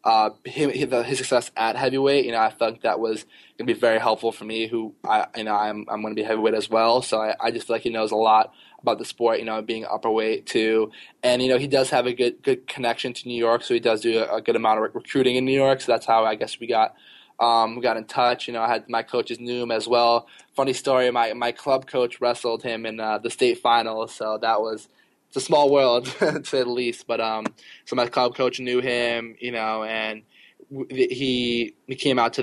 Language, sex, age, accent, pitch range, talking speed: English, male, 20-39, American, 110-130 Hz, 255 wpm